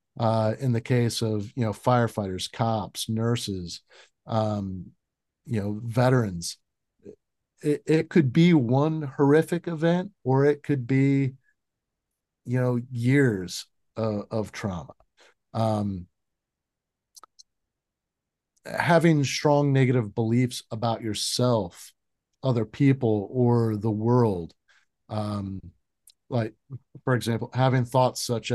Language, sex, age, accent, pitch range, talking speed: English, male, 50-69, American, 105-130 Hz, 105 wpm